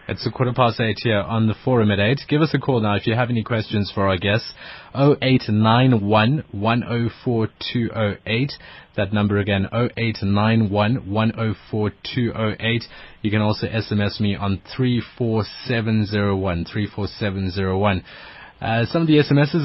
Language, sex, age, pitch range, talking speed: English, male, 20-39, 105-135 Hz, 130 wpm